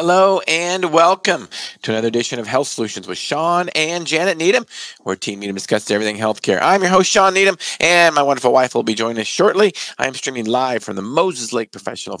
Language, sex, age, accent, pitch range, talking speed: English, male, 40-59, American, 110-165 Hz, 210 wpm